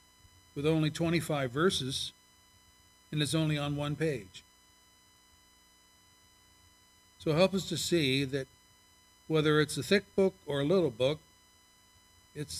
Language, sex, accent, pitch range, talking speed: English, male, American, 100-145 Hz, 125 wpm